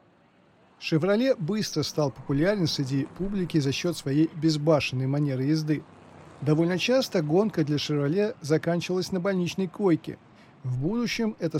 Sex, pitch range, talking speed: male, 140-175 Hz, 125 wpm